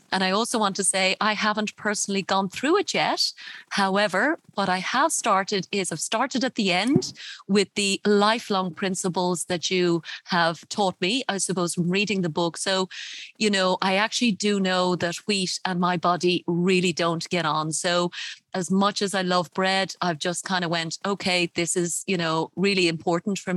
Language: English